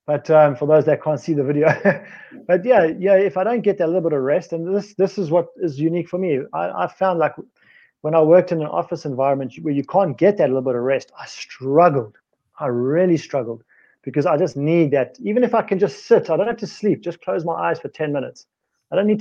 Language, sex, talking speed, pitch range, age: English, male, 255 wpm, 135-185 Hz, 30-49